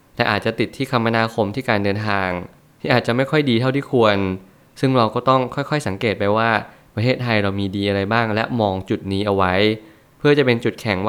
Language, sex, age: Thai, male, 20-39